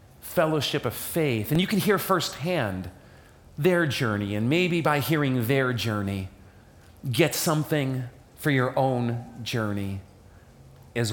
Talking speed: 125 wpm